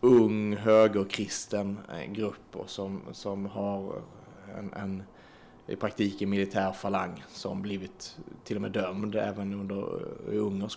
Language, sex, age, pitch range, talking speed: Swedish, male, 30-49, 100-120 Hz, 130 wpm